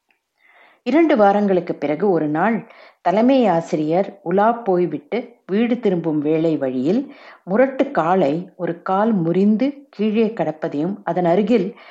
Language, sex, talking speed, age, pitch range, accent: Tamil, female, 110 wpm, 50-69, 170-220 Hz, native